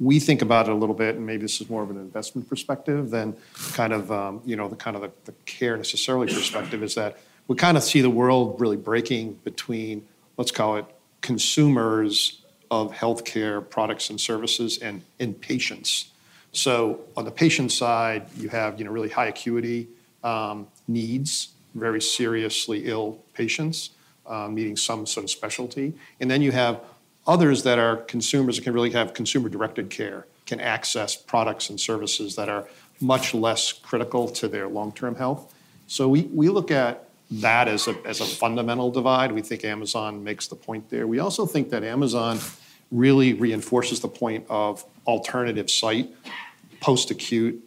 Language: English